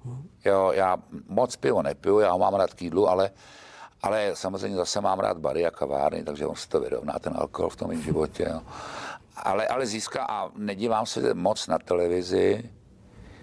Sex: male